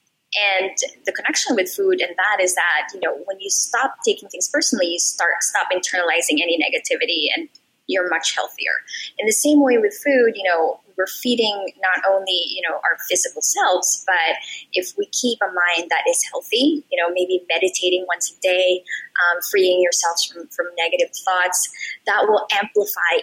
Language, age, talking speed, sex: English, 20-39, 180 wpm, female